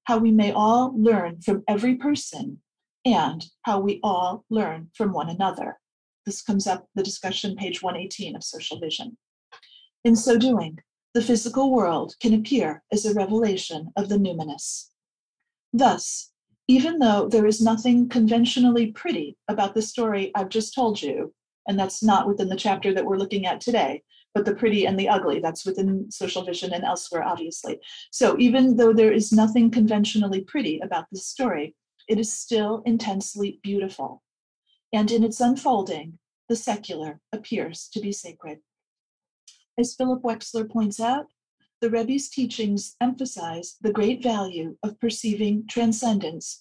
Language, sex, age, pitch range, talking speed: English, female, 40-59, 195-235 Hz, 155 wpm